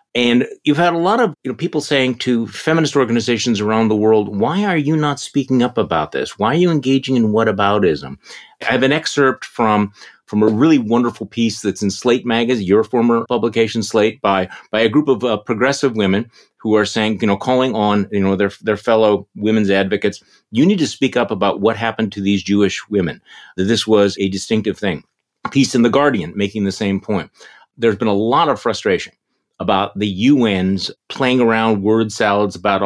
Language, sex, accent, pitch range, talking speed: English, male, American, 100-135 Hz, 200 wpm